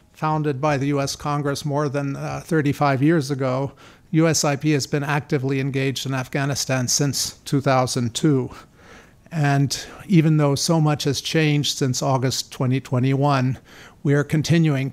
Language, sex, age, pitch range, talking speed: English, male, 50-69, 130-150 Hz, 135 wpm